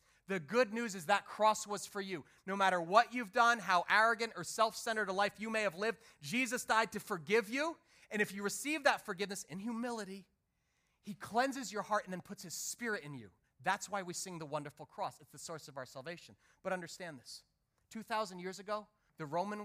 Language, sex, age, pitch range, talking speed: English, male, 30-49, 170-220 Hz, 210 wpm